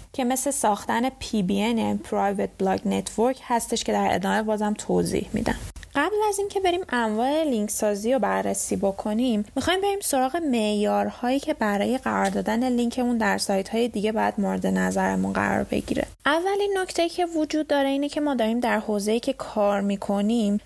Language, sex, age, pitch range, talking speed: Persian, female, 10-29, 205-280 Hz, 165 wpm